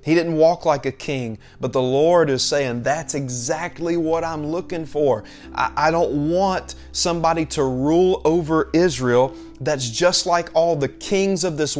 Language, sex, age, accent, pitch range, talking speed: English, male, 30-49, American, 135-190 Hz, 175 wpm